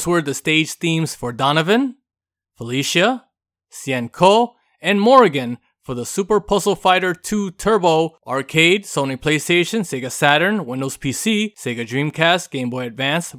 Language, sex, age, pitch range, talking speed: English, male, 20-39, 135-185 Hz, 140 wpm